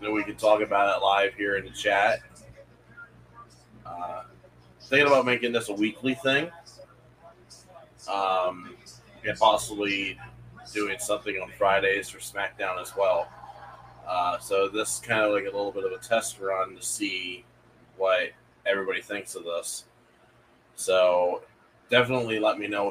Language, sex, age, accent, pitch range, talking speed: English, male, 20-39, American, 95-125 Hz, 145 wpm